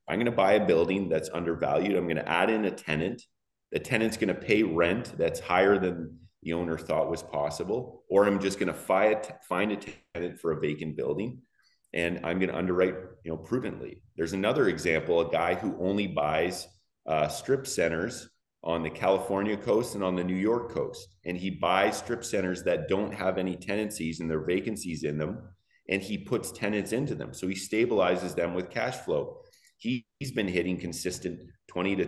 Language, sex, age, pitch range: English, male, 30-49, 85-105 Hz